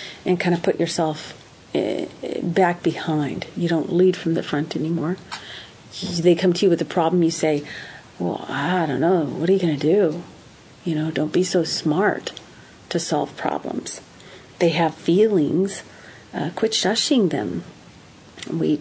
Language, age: English, 40-59